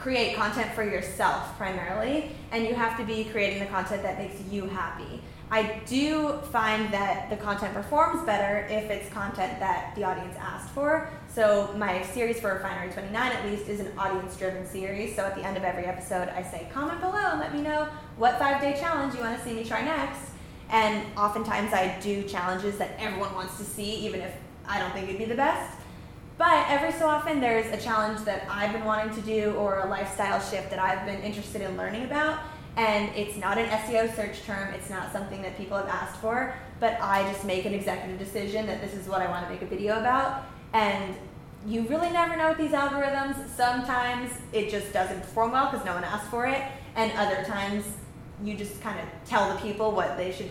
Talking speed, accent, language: 210 wpm, American, English